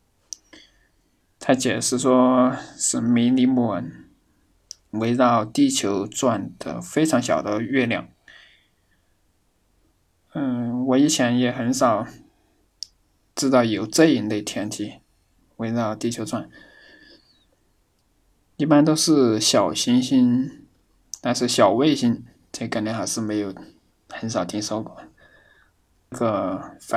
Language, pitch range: Chinese, 110-135 Hz